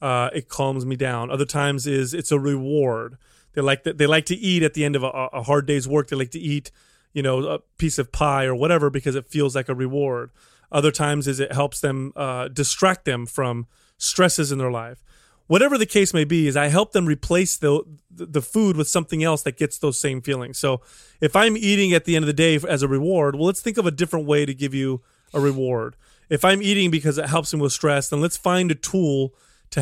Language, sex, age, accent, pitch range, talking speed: English, male, 30-49, American, 135-170 Hz, 240 wpm